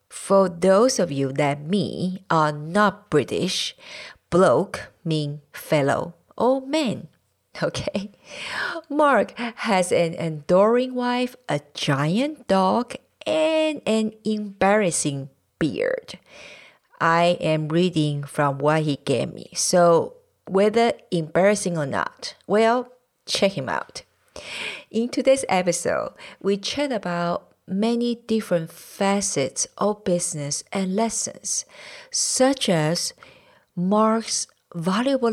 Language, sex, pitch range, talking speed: English, female, 175-245 Hz, 105 wpm